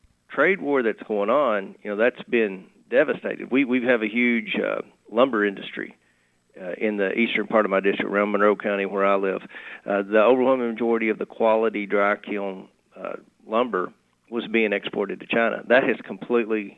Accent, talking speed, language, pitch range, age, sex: American, 180 wpm, English, 100-120 Hz, 40-59, male